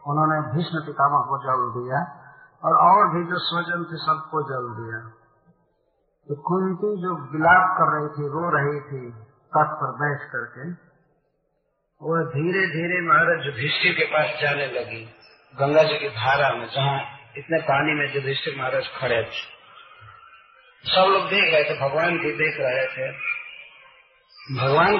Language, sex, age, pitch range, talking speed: Hindi, male, 50-69, 135-175 Hz, 150 wpm